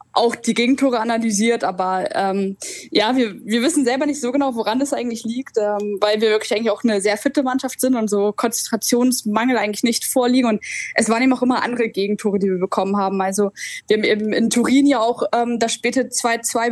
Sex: female